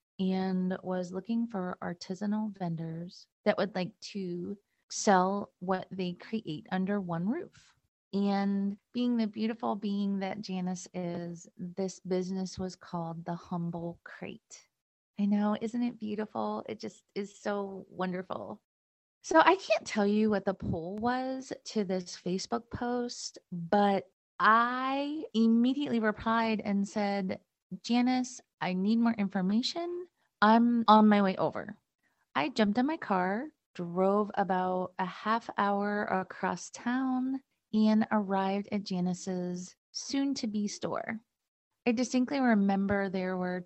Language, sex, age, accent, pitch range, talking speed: English, female, 30-49, American, 180-220 Hz, 130 wpm